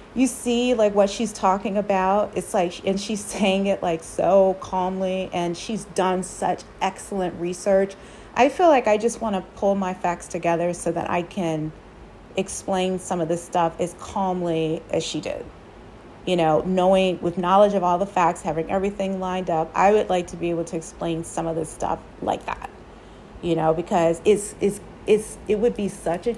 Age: 30-49